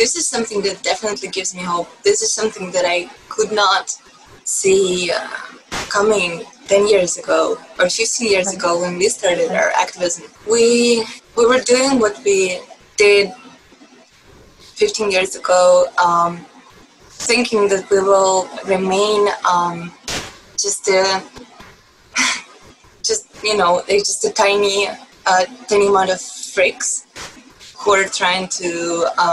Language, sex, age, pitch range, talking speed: English, female, 20-39, 185-240 Hz, 135 wpm